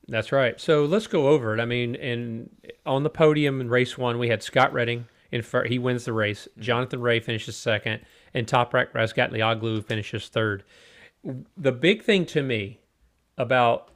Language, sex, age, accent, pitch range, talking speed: English, male, 40-59, American, 110-130 Hz, 175 wpm